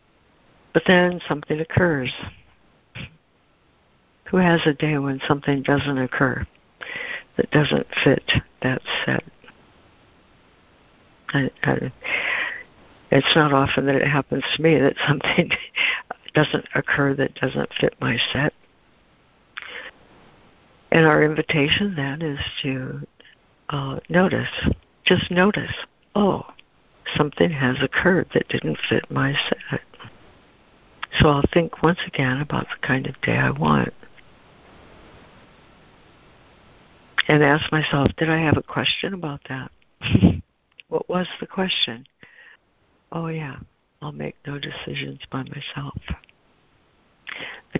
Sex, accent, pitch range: female, American, 130-160 Hz